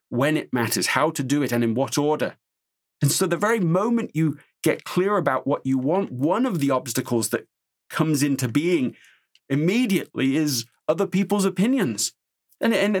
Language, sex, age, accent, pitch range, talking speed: English, male, 40-59, British, 125-165 Hz, 175 wpm